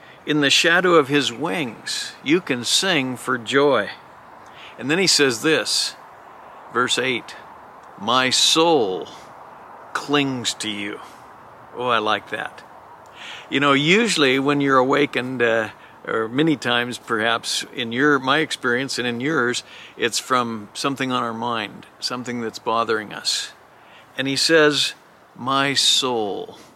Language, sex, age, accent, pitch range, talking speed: English, male, 50-69, American, 120-145 Hz, 135 wpm